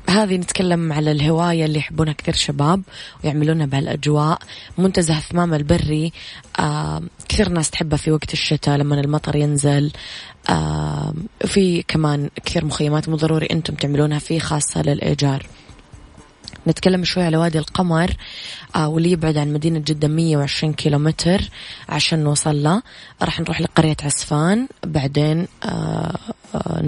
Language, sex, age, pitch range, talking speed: Arabic, female, 20-39, 145-165 Hz, 125 wpm